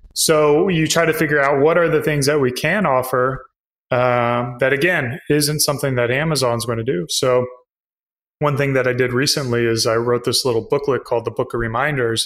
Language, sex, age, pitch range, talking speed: English, male, 20-39, 125-150 Hz, 205 wpm